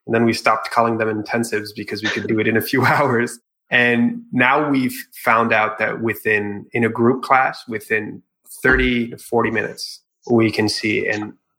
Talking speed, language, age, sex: 185 wpm, English, 20-39, male